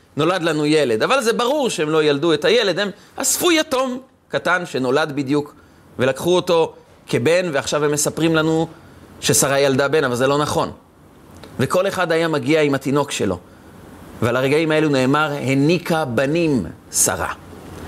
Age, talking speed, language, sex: 30-49, 150 wpm, Hebrew, male